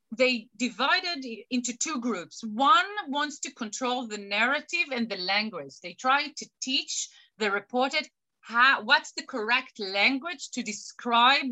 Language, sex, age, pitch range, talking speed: English, female, 30-49, 215-265 Hz, 135 wpm